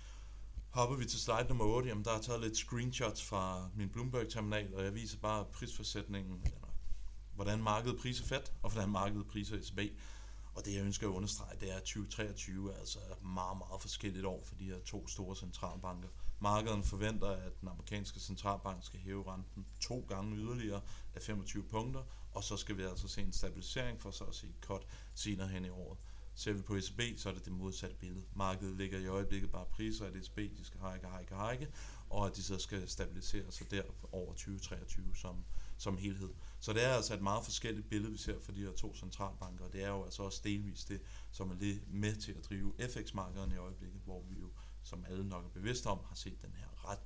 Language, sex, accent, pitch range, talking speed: Danish, male, native, 95-105 Hz, 210 wpm